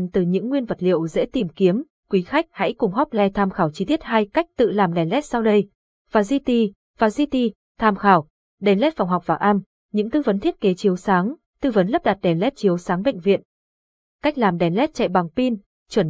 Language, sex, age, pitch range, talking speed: Vietnamese, female, 20-39, 185-235 Hz, 230 wpm